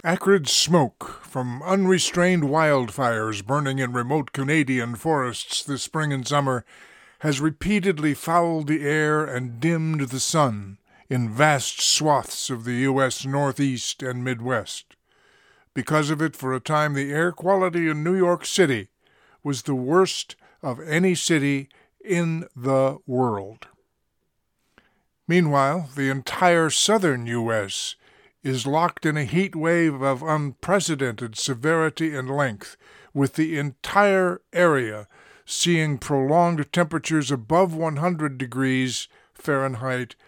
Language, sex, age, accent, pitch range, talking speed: English, male, 50-69, American, 130-160 Hz, 120 wpm